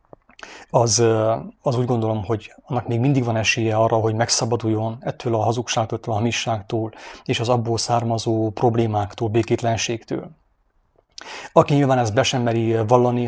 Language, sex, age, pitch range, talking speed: English, male, 30-49, 110-120 Hz, 140 wpm